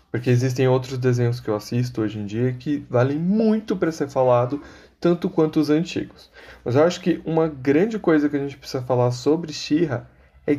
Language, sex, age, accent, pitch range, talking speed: Portuguese, male, 20-39, Brazilian, 110-145 Hz, 200 wpm